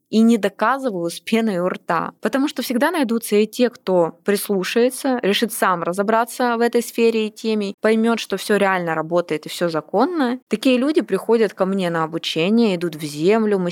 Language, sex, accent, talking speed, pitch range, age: Russian, female, native, 185 wpm, 180-225 Hz, 20-39